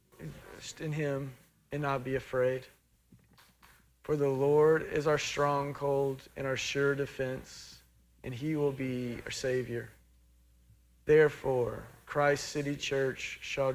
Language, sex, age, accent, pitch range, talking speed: English, male, 40-59, American, 125-150 Hz, 120 wpm